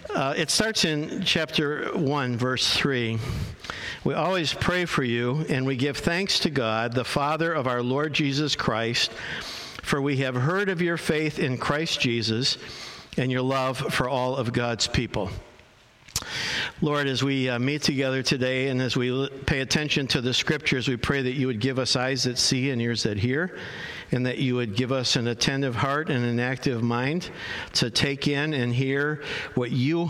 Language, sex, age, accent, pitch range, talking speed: English, male, 60-79, American, 125-150 Hz, 185 wpm